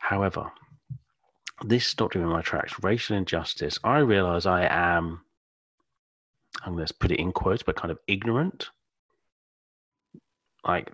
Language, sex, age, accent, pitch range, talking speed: English, male, 40-59, British, 80-115 Hz, 130 wpm